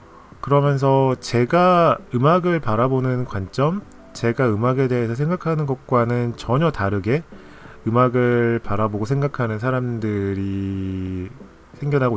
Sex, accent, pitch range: male, native, 100-135 Hz